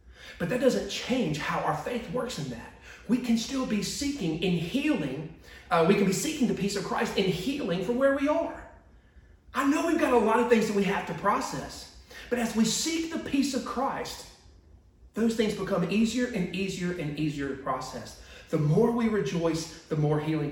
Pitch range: 150-225 Hz